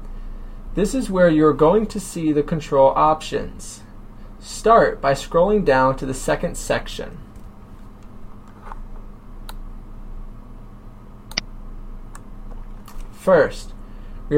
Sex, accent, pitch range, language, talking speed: male, American, 105-155 Hz, English, 90 wpm